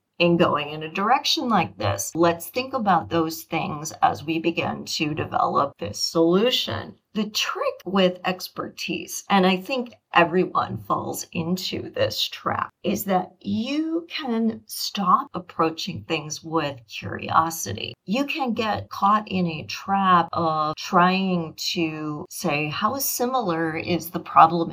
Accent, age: American, 40-59